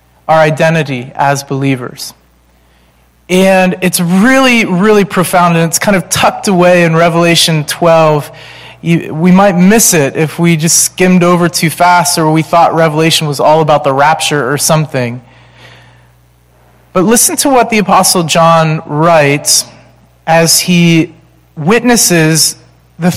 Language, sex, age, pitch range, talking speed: English, male, 30-49, 145-180 Hz, 135 wpm